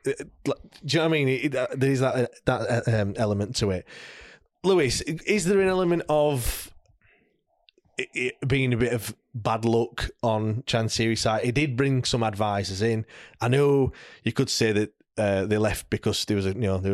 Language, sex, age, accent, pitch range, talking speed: English, male, 20-39, British, 100-125 Hz, 165 wpm